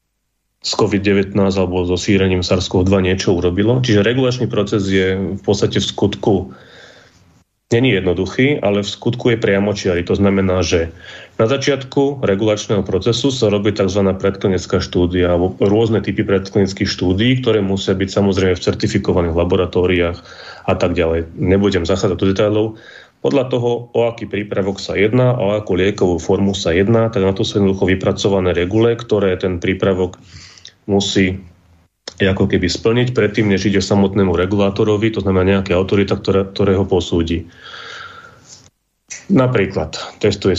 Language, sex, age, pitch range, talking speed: Slovak, male, 30-49, 95-105 Hz, 145 wpm